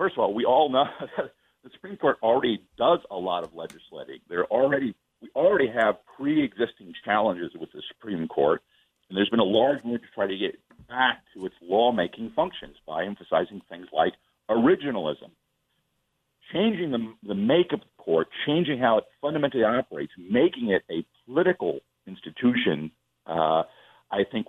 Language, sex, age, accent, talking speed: English, male, 50-69, American, 165 wpm